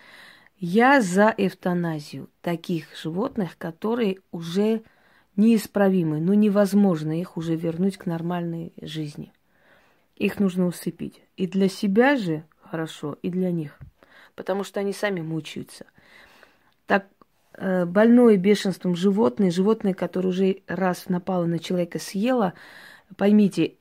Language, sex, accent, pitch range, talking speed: Russian, female, native, 170-210 Hz, 115 wpm